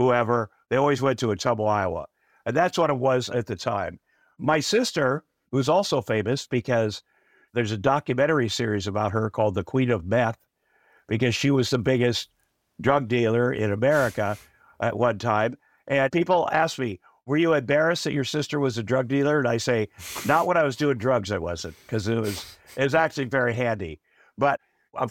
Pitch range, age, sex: 110-140 Hz, 50-69, male